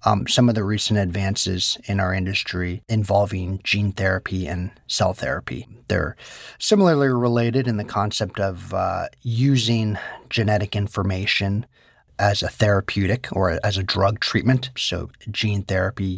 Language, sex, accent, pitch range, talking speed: English, male, American, 95-110 Hz, 135 wpm